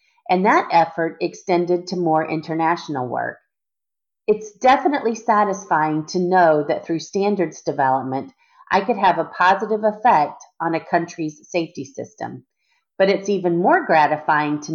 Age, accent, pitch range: 40-59, American, 155-200 Hz